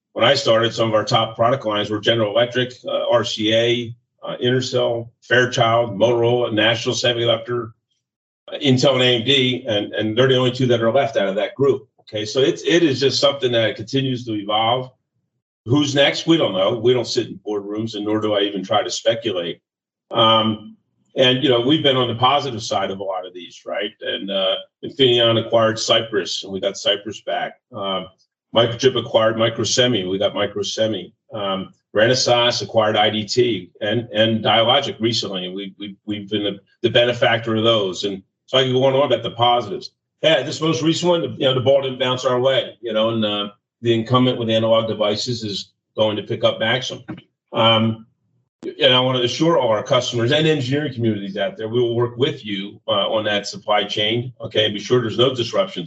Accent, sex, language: American, male, English